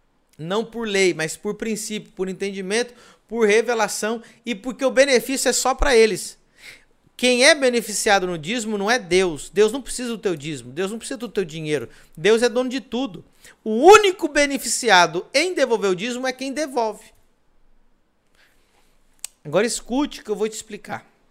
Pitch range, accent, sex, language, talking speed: 155-240 Hz, Brazilian, male, Portuguese, 170 wpm